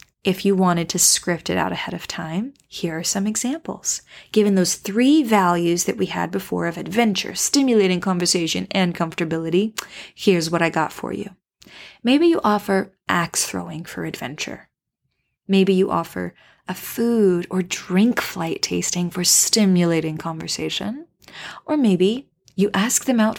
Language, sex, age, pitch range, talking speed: English, female, 20-39, 170-220 Hz, 150 wpm